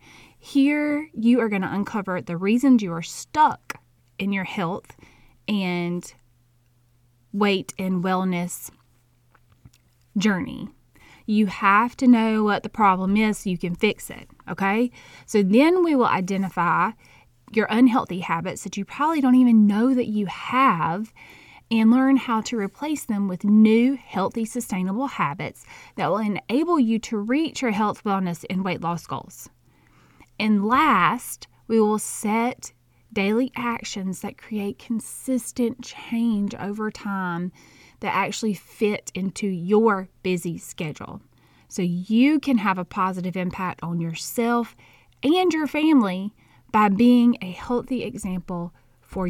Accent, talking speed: American, 135 wpm